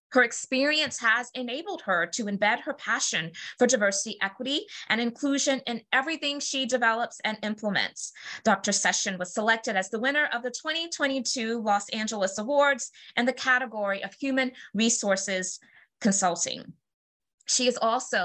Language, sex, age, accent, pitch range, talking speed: English, female, 20-39, American, 200-275 Hz, 140 wpm